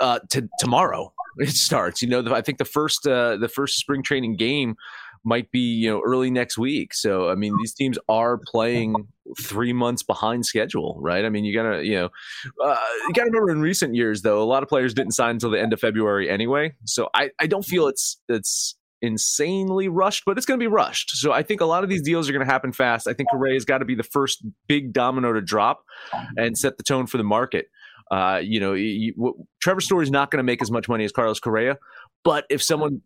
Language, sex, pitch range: English, male, 115-145 Hz